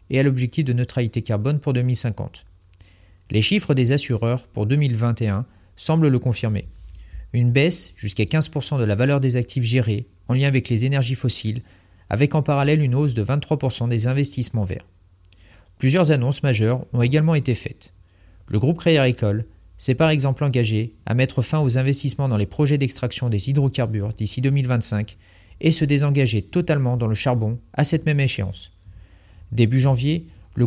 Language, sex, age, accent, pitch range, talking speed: French, male, 40-59, French, 105-145 Hz, 165 wpm